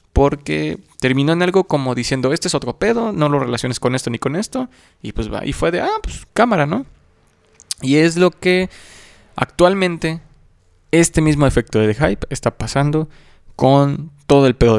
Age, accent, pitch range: 20-39, Mexican, 110-145 Hz